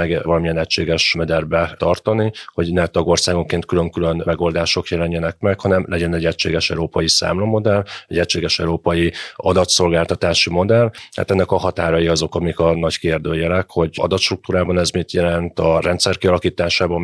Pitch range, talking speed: 85-90 Hz, 140 wpm